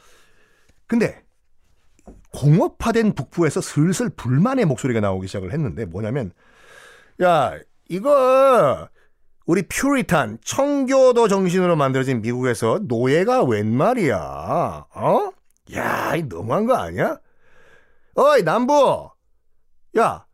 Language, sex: Korean, male